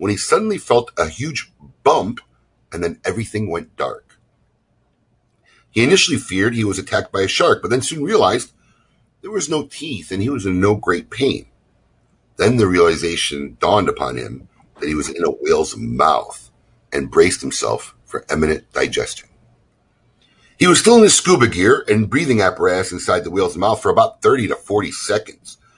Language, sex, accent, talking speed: English, male, American, 175 wpm